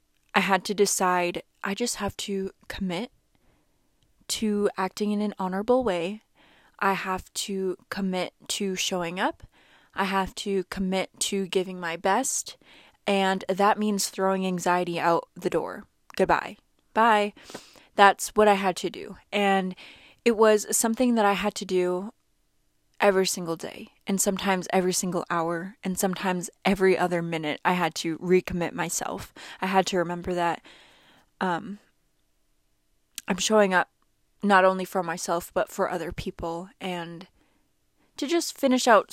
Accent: American